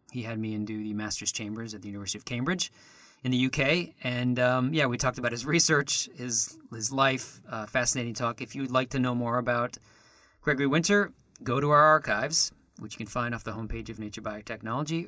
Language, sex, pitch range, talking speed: English, male, 110-135 Hz, 210 wpm